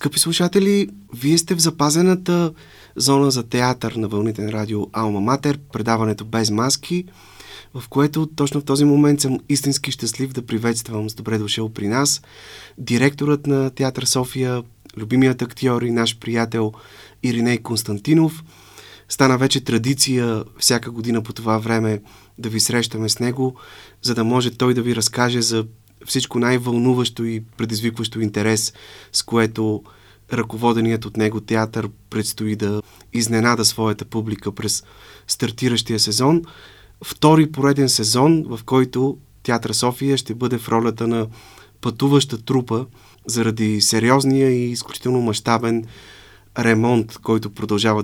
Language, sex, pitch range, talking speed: Bulgarian, male, 110-130 Hz, 135 wpm